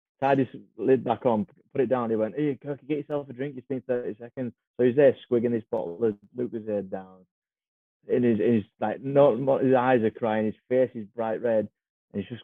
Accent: British